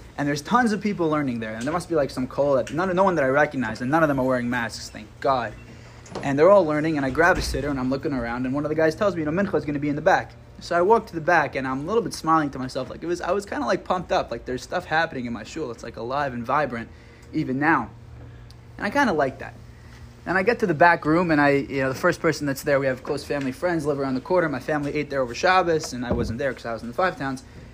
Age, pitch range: 20-39, 125-165 Hz